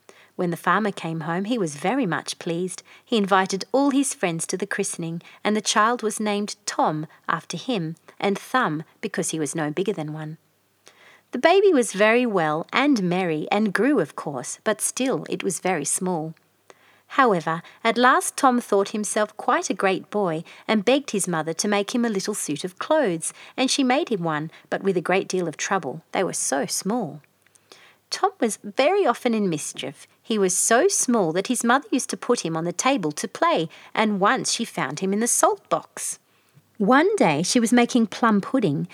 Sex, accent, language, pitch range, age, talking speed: female, Australian, English, 170-240 Hz, 40-59, 195 wpm